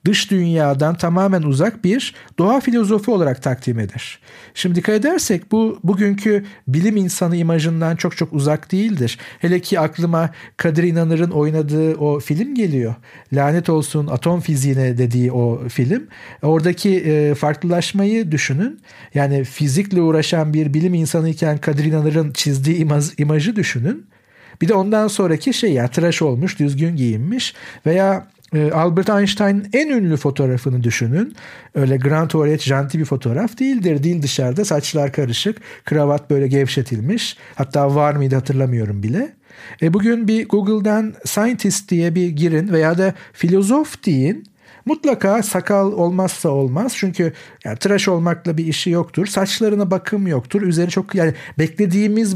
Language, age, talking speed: Turkish, 50-69, 140 wpm